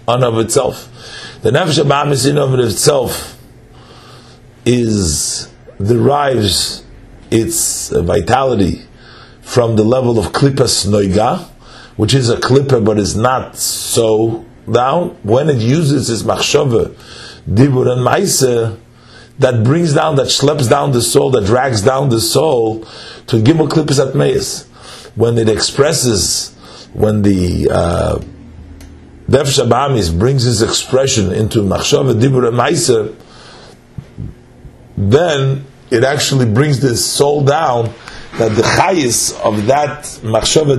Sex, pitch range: male, 110-135 Hz